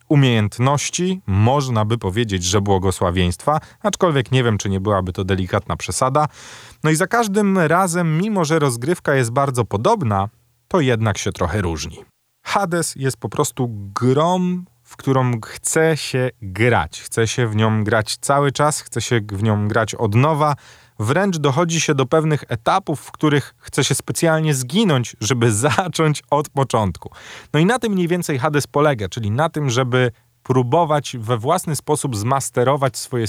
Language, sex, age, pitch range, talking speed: Polish, male, 30-49, 110-150 Hz, 160 wpm